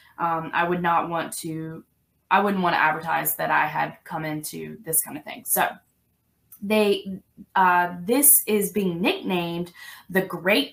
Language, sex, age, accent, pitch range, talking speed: English, female, 20-39, American, 180-220 Hz, 155 wpm